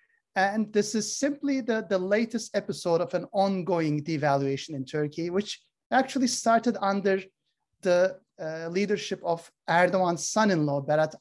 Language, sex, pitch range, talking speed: Turkish, male, 155-220 Hz, 135 wpm